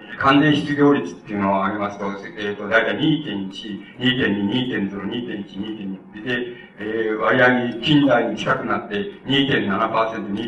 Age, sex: 60-79, male